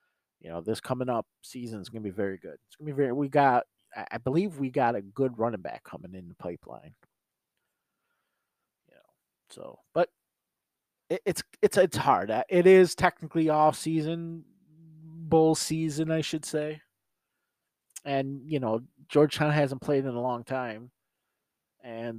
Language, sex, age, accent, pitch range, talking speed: English, male, 30-49, American, 115-155 Hz, 165 wpm